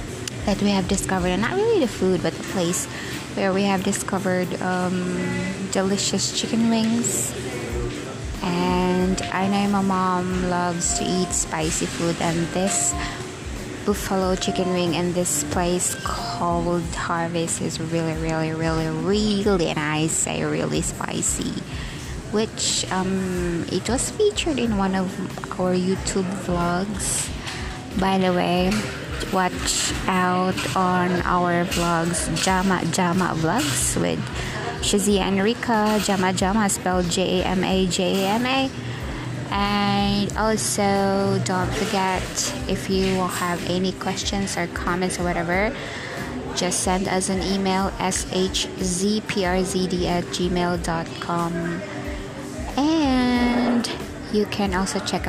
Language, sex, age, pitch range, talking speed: English, female, 20-39, 175-200 Hz, 115 wpm